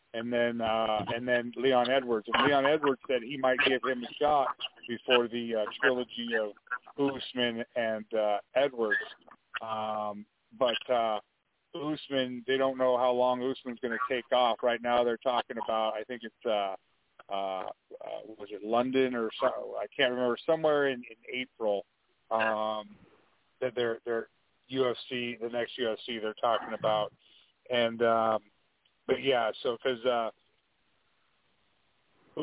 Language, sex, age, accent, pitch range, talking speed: English, male, 40-59, American, 115-130 Hz, 145 wpm